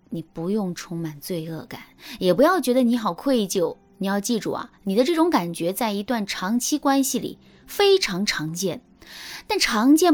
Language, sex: Chinese, female